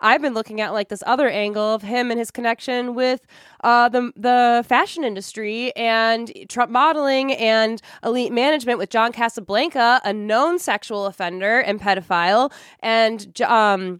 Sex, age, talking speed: female, 20-39, 155 wpm